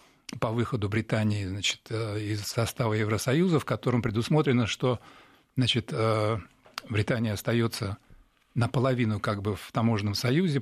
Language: Russian